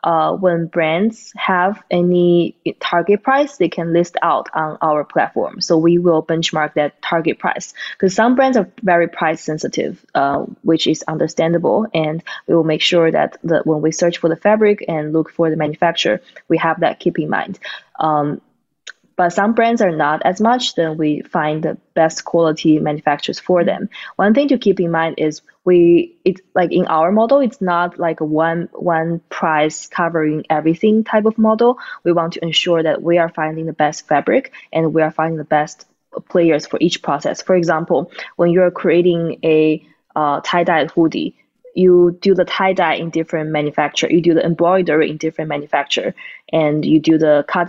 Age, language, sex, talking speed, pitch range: 20-39, English, female, 185 wpm, 155-180 Hz